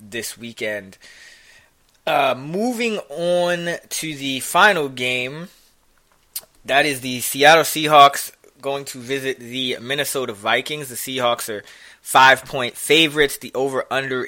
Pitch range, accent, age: 115-145 Hz, American, 20-39